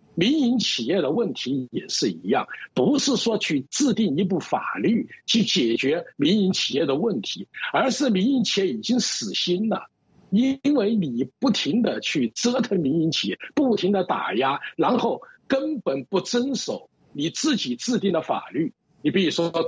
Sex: male